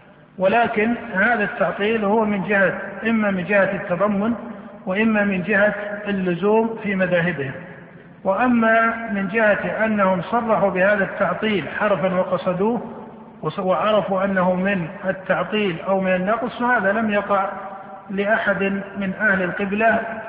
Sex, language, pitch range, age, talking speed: male, Arabic, 190-220 Hz, 50-69, 115 wpm